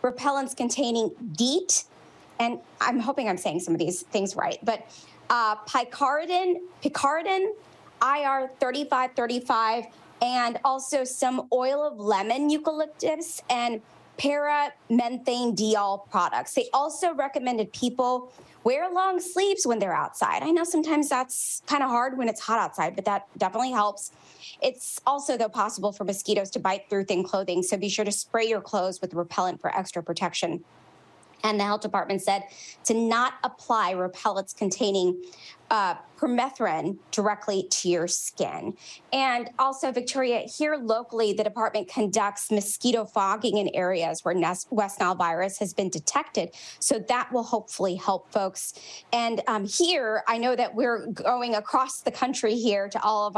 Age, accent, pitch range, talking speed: 20-39, American, 200-255 Hz, 150 wpm